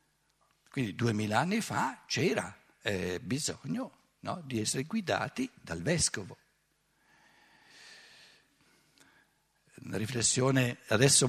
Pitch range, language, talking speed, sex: 125-160 Hz, Italian, 75 wpm, male